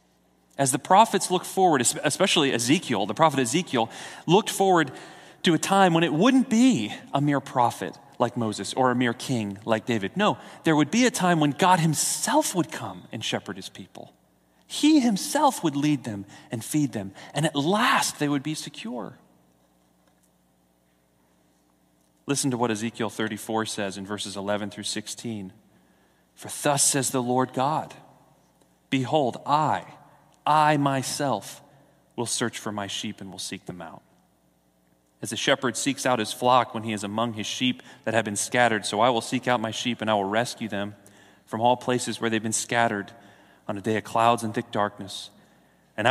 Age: 40-59